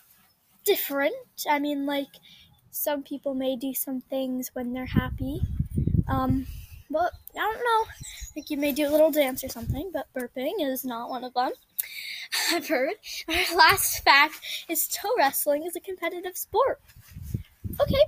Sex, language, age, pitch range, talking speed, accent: female, English, 10-29, 265-350 Hz, 155 wpm, American